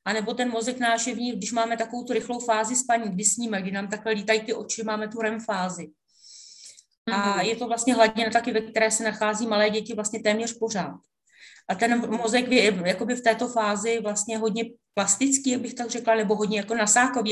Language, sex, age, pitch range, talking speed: Czech, female, 30-49, 210-235 Hz, 200 wpm